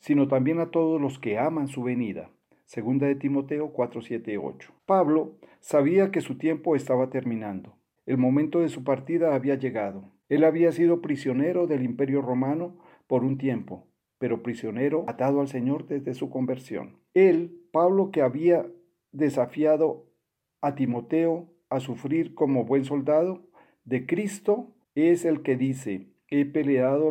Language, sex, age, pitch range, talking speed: Spanish, male, 50-69, 130-160 Hz, 145 wpm